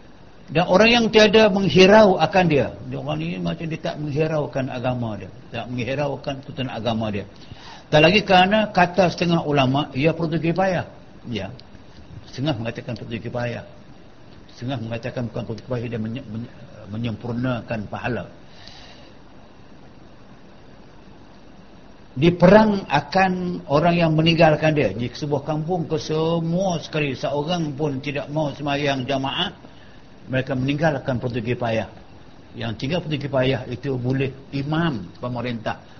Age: 60-79